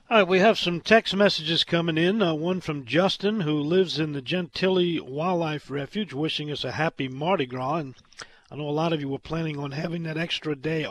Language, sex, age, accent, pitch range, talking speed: English, male, 50-69, American, 145-185 Hz, 220 wpm